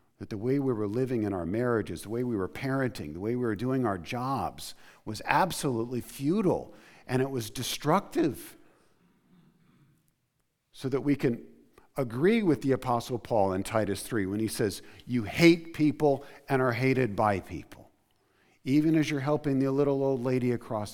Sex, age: male, 50-69